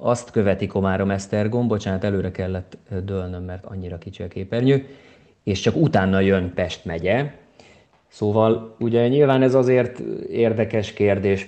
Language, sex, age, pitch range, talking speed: Hungarian, male, 20-39, 95-110 Hz, 135 wpm